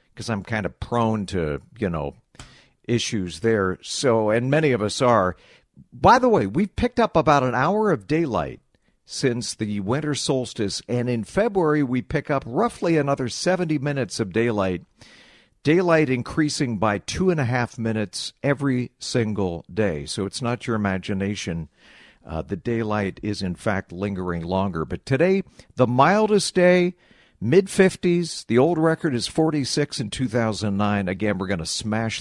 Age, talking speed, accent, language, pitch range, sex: 50-69, 160 wpm, American, English, 100-145 Hz, male